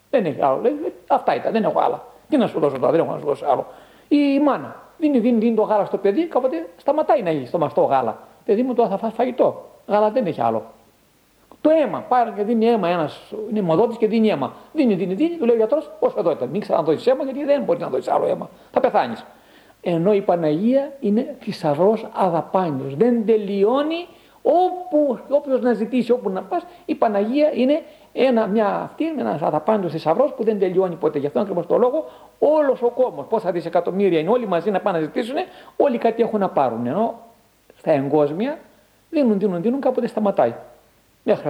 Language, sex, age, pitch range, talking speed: Greek, male, 50-69, 195-280 Hz, 195 wpm